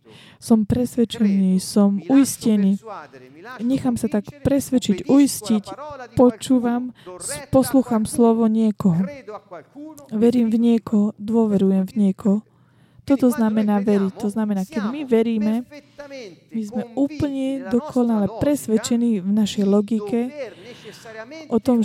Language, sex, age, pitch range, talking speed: Slovak, female, 20-39, 205-245 Hz, 100 wpm